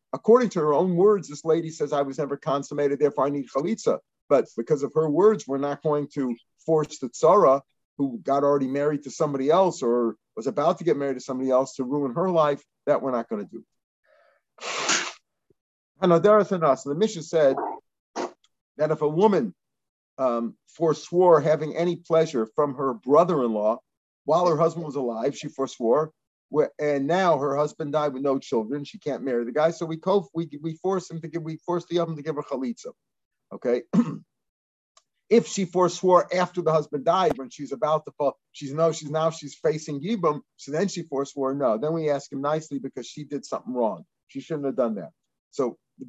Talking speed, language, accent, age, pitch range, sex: 195 wpm, English, American, 50-69, 140-170 Hz, male